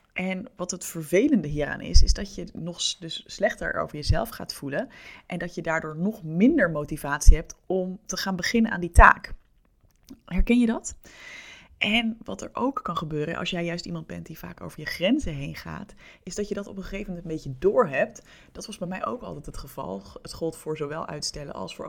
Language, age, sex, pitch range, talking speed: Dutch, 20-39, female, 160-210 Hz, 215 wpm